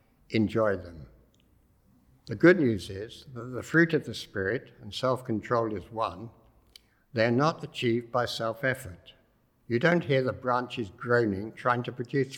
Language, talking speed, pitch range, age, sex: English, 160 wpm, 110-130 Hz, 60-79, male